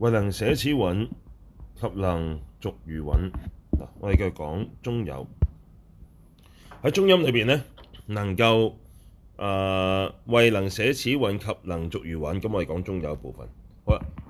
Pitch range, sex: 85-110 Hz, male